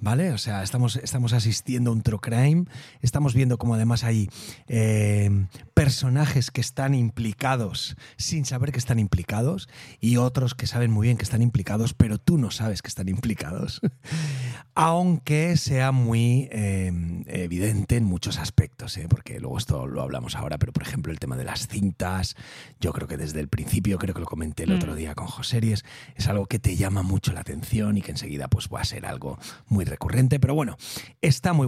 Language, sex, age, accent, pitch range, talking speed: Spanish, male, 30-49, Spanish, 100-130 Hz, 195 wpm